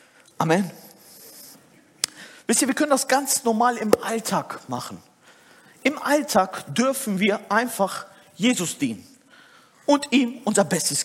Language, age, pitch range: German, 40-59, 170-275 Hz